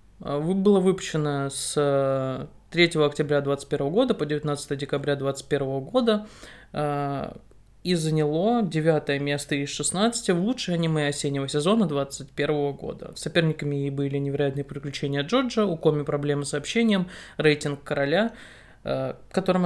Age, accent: 20-39, native